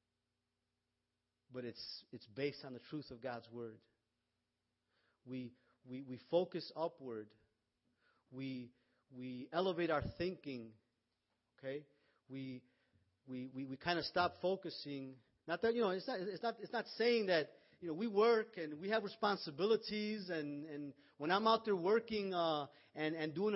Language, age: English, 40-59